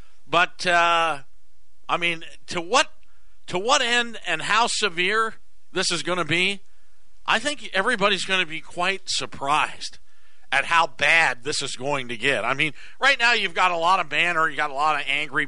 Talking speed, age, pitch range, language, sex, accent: 190 wpm, 50-69, 135-205 Hz, English, male, American